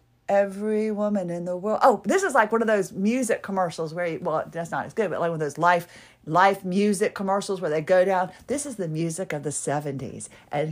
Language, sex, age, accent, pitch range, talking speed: English, female, 40-59, American, 180-260 Hz, 235 wpm